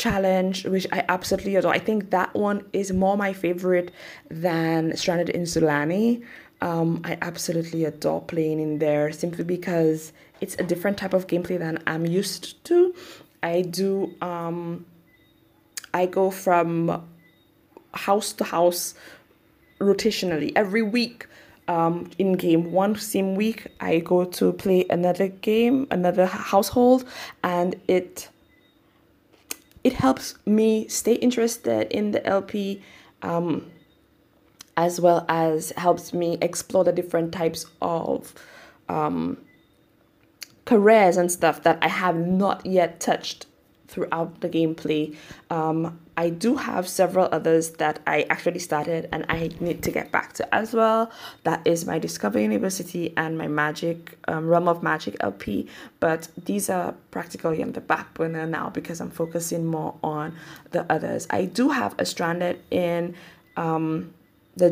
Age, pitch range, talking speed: 20-39, 165-195 Hz, 140 wpm